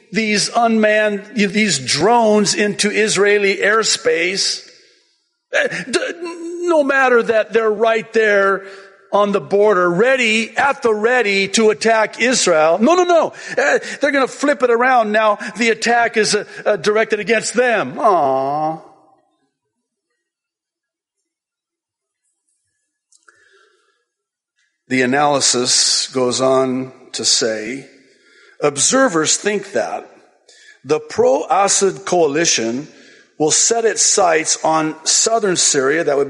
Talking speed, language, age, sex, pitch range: 100 wpm, English, 50-69, male, 180-270 Hz